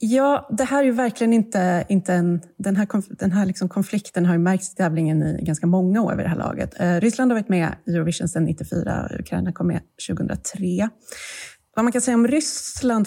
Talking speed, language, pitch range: 195 wpm, Swedish, 170-200 Hz